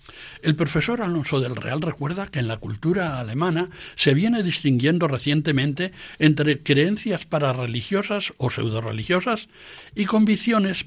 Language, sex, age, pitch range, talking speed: Spanish, male, 60-79, 125-175 Hz, 120 wpm